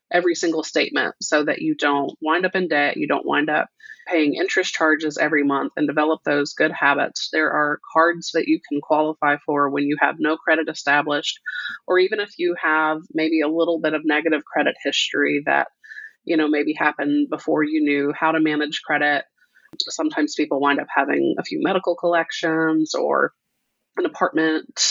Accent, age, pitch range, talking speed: American, 30-49, 150-185 Hz, 180 wpm